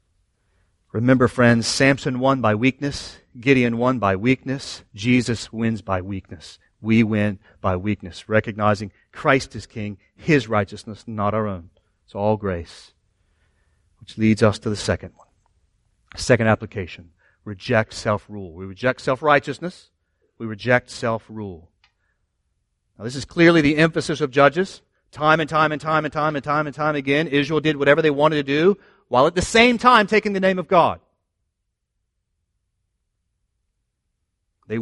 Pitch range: 95-145 Hz